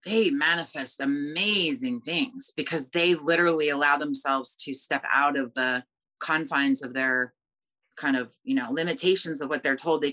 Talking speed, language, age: 160 wpm, English, 30-49